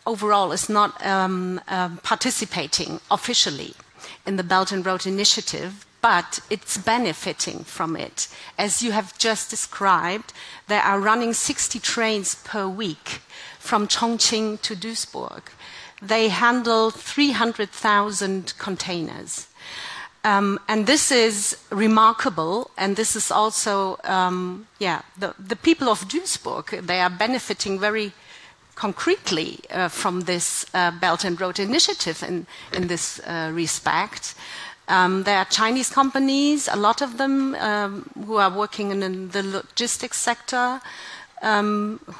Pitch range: 195-235 Hz